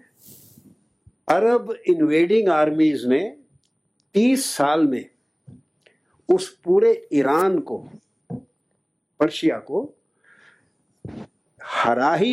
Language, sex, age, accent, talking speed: English, male, 60-79, Indian, 50 wpm